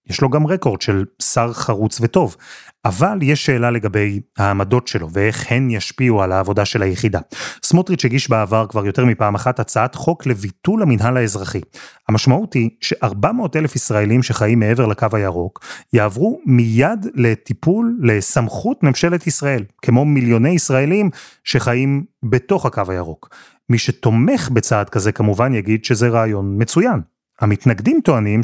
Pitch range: 110-140 Hz